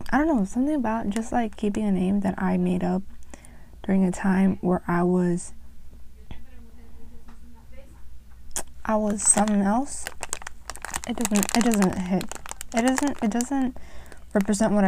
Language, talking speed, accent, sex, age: English, 140 wpm, American, female, 20-39